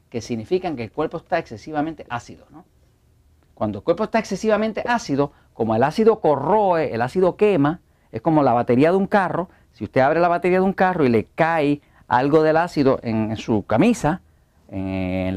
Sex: male